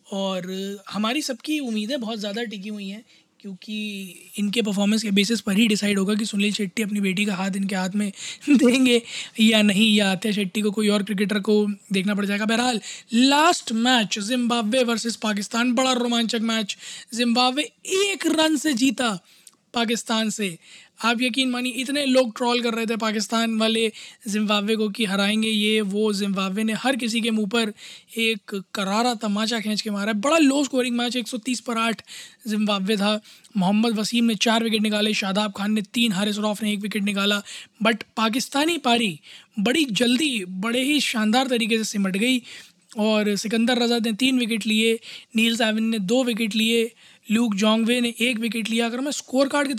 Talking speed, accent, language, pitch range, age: 180 wpm, native, Hindi, 210-235 Hz, 20-39